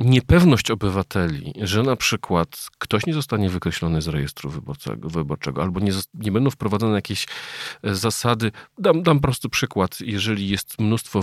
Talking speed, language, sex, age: 145 wpm, Polish, male, 40-59